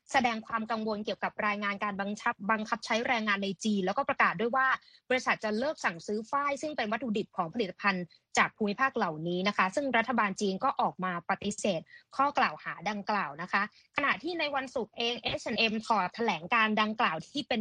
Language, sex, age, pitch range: Thai, female, 20-39, 200-260 Hz